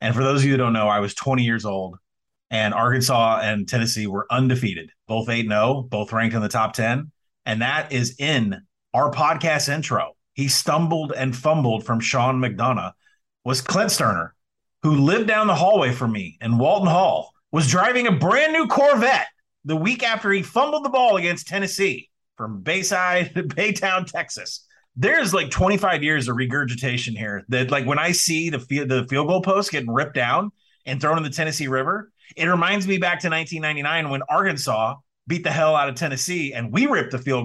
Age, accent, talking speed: 30-49, American, 190 wpm